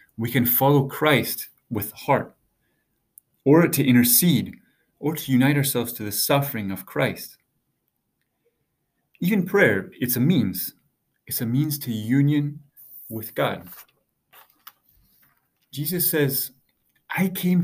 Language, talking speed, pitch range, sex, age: English, 115 wpm, 115-145 Hz, male, 30-49